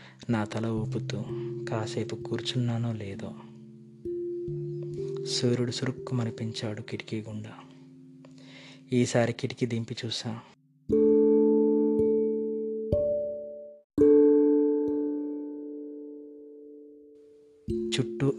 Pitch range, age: 105-130 Hz, 20-39